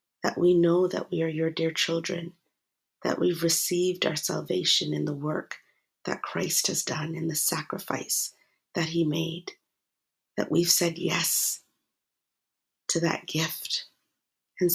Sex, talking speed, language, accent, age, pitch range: female, 140 wpm, English, American, 40-59, 165-175 Hz